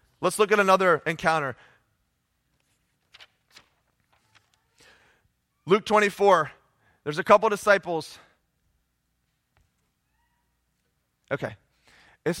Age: 20-39